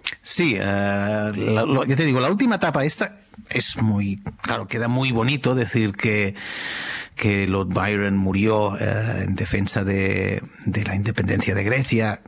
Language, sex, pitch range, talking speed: Spanish, male, 100-125 Hz, 155 wpm